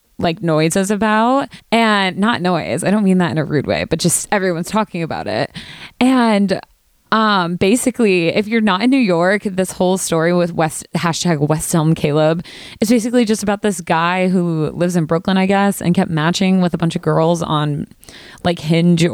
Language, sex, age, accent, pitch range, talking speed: English, female, 20-39, American, 165-215 Hz, 195 wpm